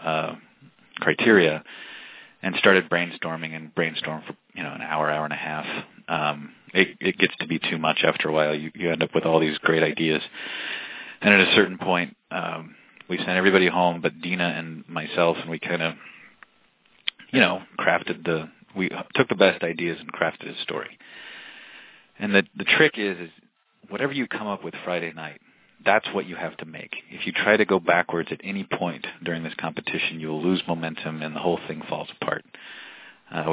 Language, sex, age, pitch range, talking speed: English, male, 30-49, 80-90 Hz, 190 wpm